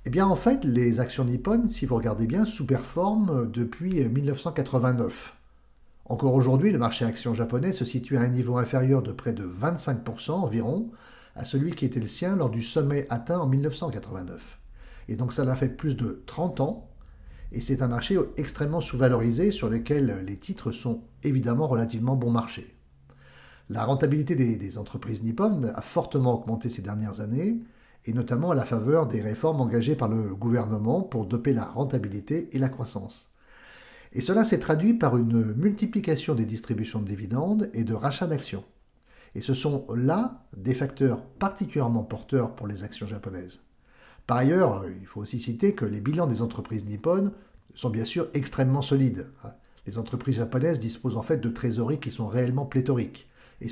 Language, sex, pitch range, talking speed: English, male, 115-145 Hz, 170 wpm